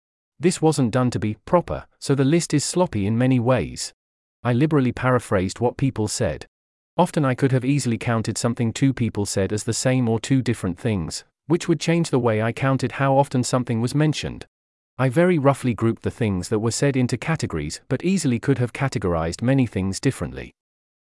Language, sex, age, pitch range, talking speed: English, male, 40-59, 110-145 Hz, 195 wpm